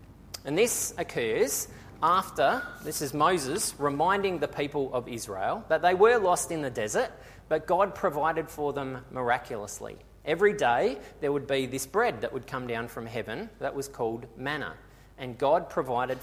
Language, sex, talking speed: English, male, 165 wpm